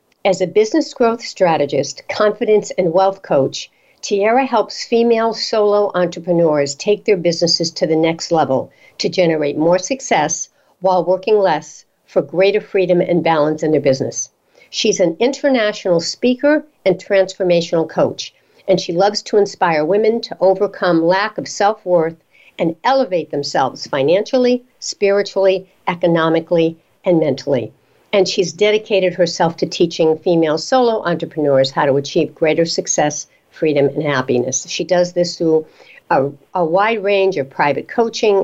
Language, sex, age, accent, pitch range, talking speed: English, female, 60-79, American, 165-210 Hz, 140 wpm